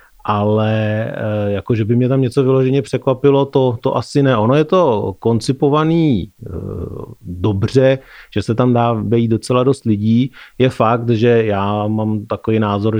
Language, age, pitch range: Czech, 30-49, 100-115 Hz